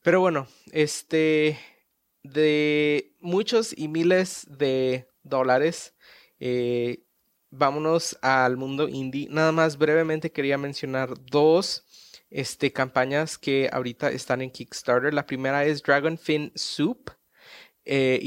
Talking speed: 110 wpm